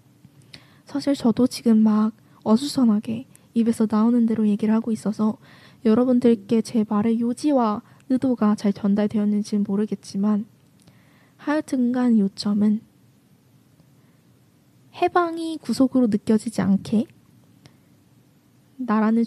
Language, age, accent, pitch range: Korean, 20-39, native, 210-240 Hz